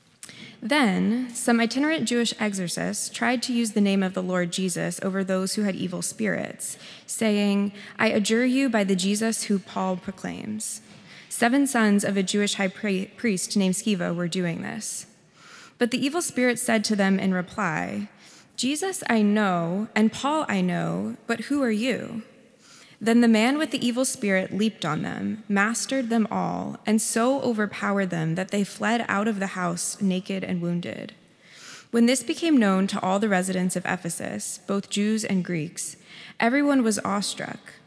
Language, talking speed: English, 170 wpm